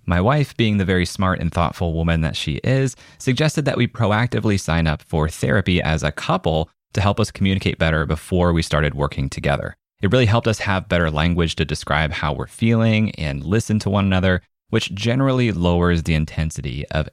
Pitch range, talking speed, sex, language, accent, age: 80-110 Hz, 195 wpm, male, English, American, 30-49